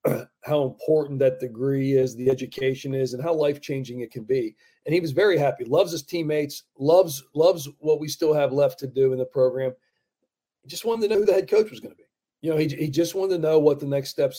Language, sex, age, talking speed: English, male, 40-59, 240 wpm